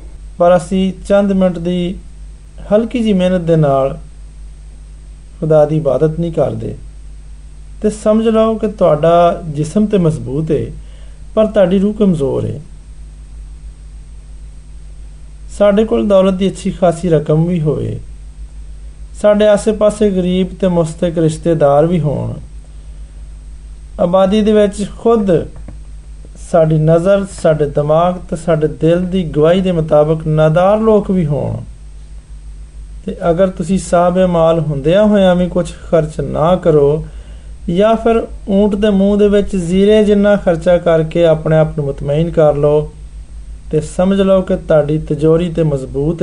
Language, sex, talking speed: Hindi, male, 110 wpm